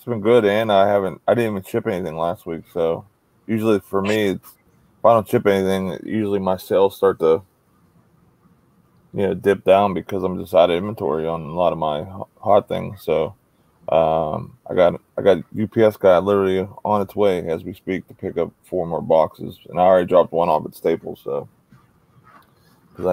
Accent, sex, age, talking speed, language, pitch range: American, male, 20-39, 195 wpm, English, 95-110 Hz